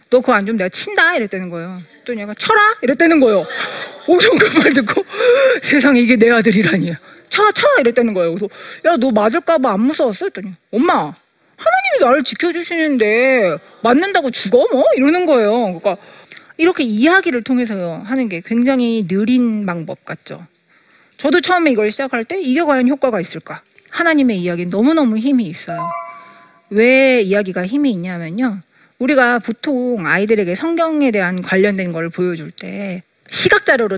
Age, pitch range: 40-59, 195-300 Hz